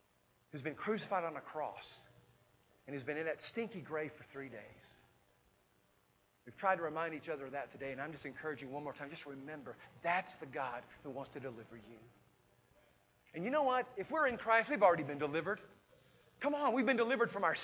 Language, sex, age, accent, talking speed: English, male, 40-59, American, 210 wpm